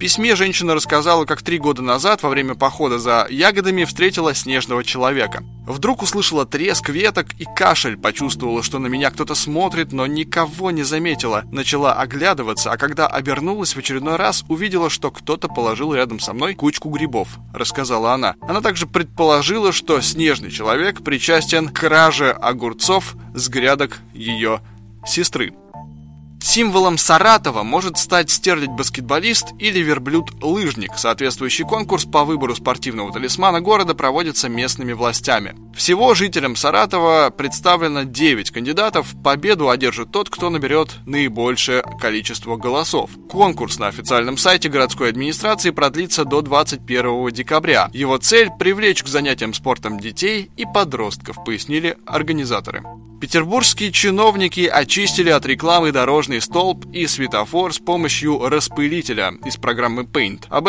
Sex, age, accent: male, 20-39, native